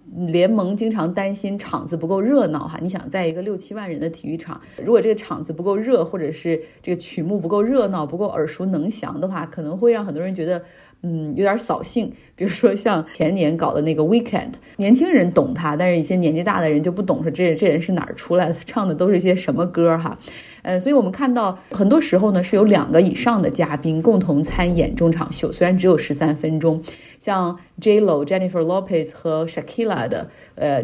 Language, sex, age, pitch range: Chinese, female, 30-49, 160-205 Hz